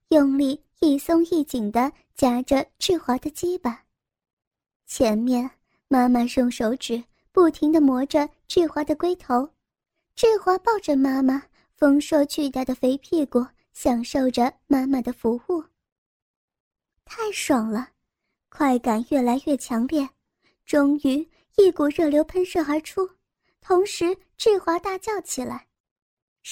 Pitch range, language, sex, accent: 260-330 Hz, Chinese, male, native